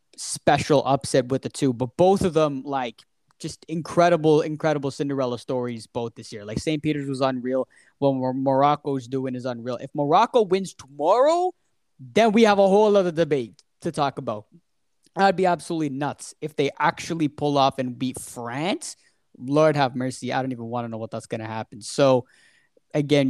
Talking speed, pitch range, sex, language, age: 180 wpm, 120-150 Hz, male, English, 20-39